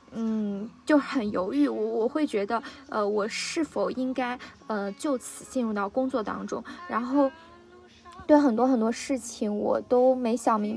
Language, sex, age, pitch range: Chinese, female, 20-39, 215-265 Hz